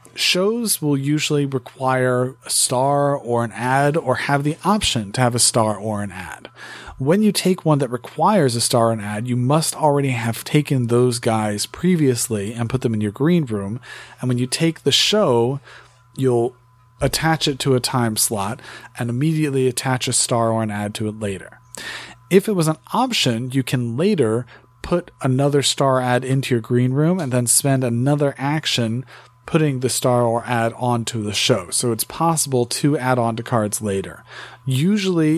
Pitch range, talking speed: 115-140 Hz, 185 wpm